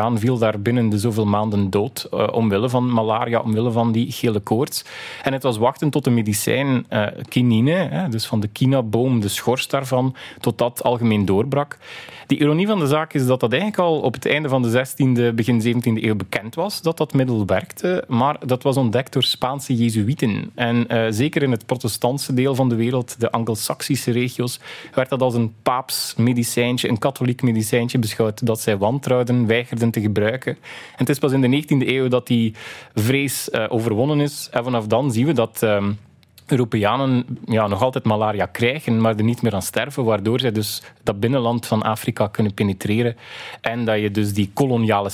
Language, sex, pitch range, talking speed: Dutch, male, 110-130 Hz, 195 wpm